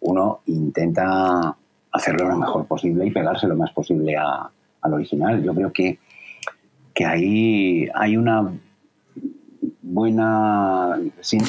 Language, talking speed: Spanish, 125 wpm